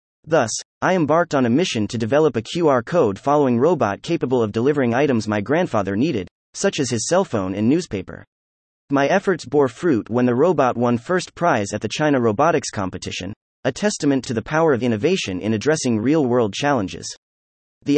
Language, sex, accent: English, male, American